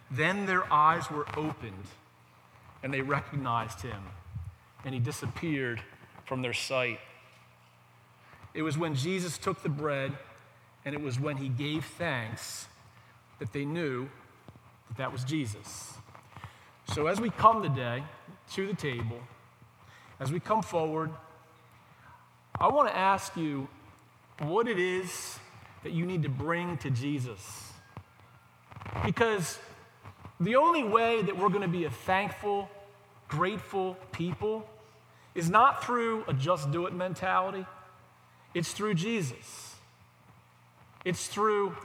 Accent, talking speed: American, 130 wpm